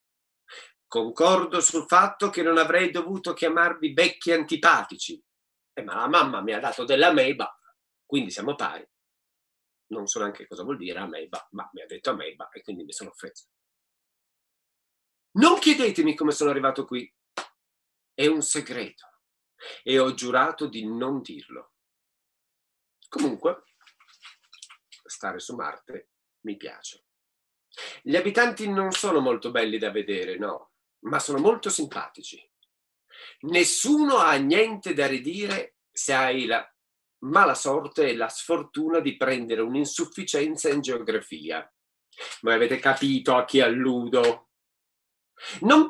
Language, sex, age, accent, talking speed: Italian, male, 40-59, native, 125 wpm